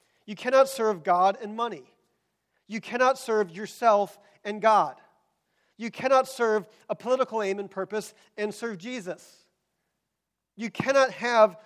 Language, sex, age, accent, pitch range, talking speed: English, male, 40-59, American, 185-240 Hz, 135 wpm